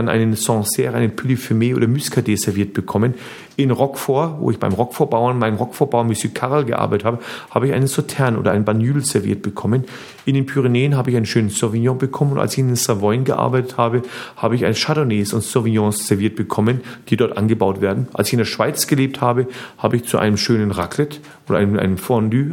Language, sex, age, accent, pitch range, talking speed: German, male, 40-59, German, 105-135 Hz, 195 wpm